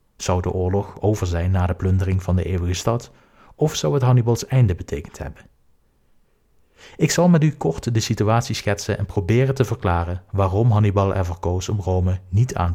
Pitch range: 90-115 Hz